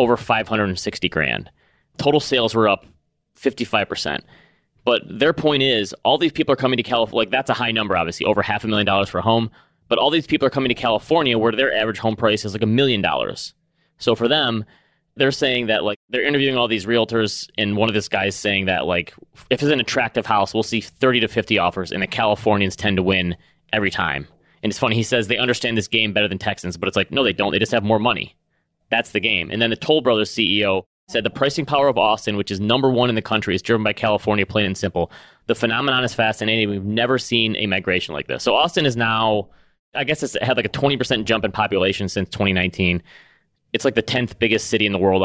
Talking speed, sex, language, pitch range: 235 wpm, male, English, 100-125 Hz